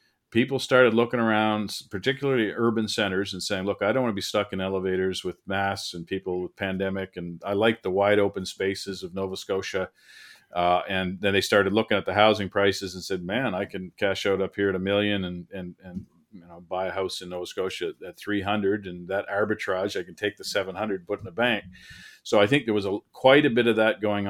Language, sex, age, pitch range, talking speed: English, male, 40-59, 90-110 Hz, 235 wpm